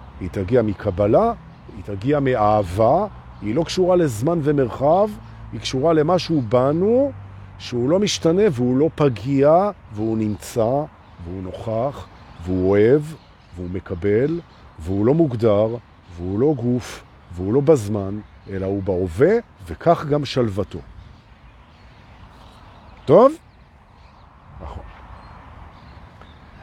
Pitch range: 100-155 Hz